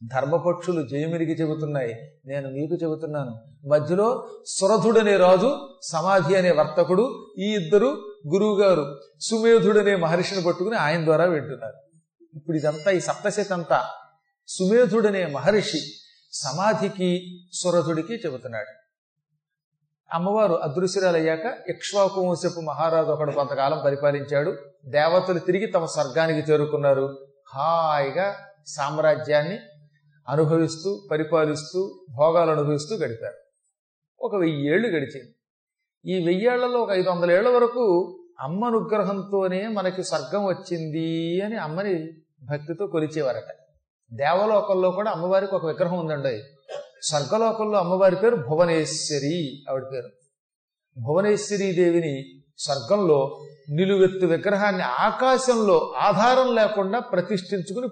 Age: 40-59